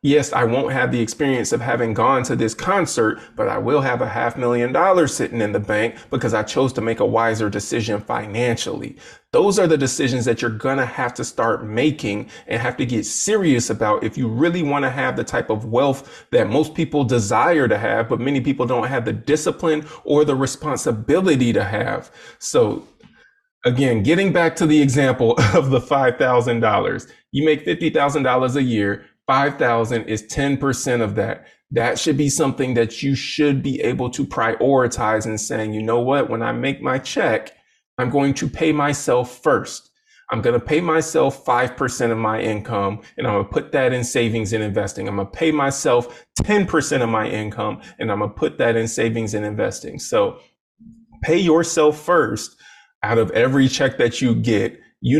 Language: English